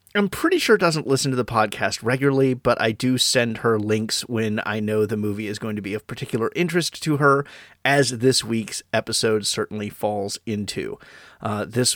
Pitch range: 110-135 Hz